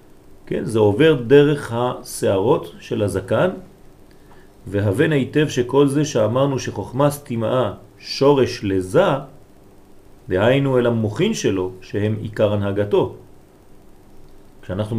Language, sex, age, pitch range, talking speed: French, male, 40-59, 100-130 Hz, 95 wpm